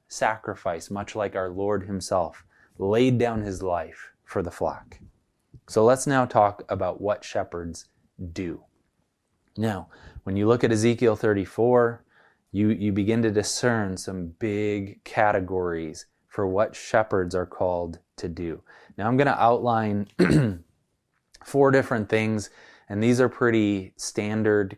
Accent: American